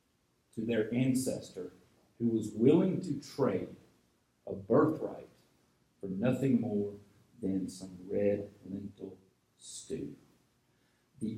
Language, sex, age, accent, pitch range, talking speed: English, male, 40-59, American, 125-205 Hz, 95 wpm